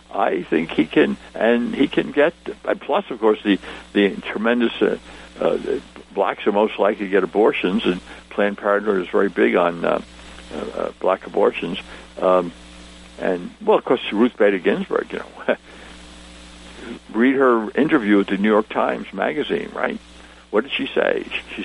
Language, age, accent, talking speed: English, 60-79, American, 165 wpm